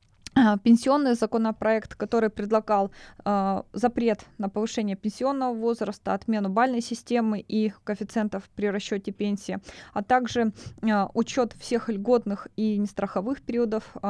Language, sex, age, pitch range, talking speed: Russian, female, 20-39, 205-245 Hz, 120 wpm